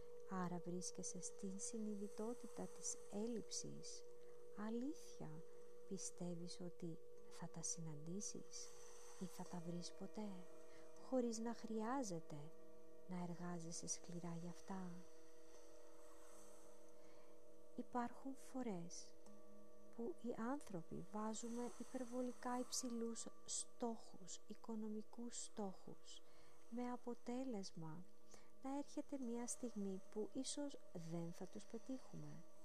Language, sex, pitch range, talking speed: Greek, female, 165-245 Hz, 90 wpm